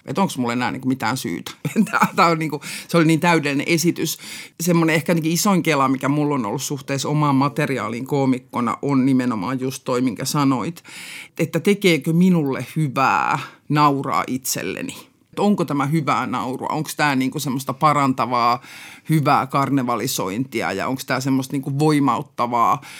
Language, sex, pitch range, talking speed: Finnish, male, 130-155 Hz, 150 wpm